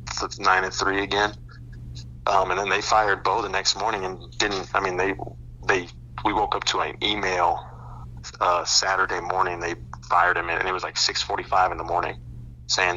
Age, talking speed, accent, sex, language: 30-49, 190 wpm, American, male, English